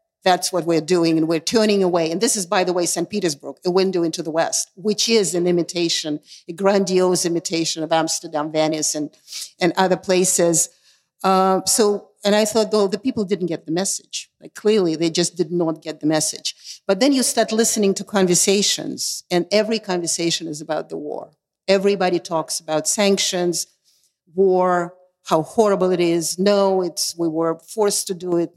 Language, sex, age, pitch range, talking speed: German, female, 50-69, 165-195 Hz, 185 wpm